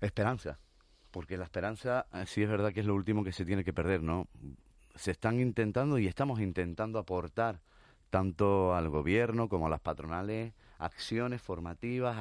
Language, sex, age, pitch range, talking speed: Spanish, male, 30-49, 90-110 Hz, 160 wpm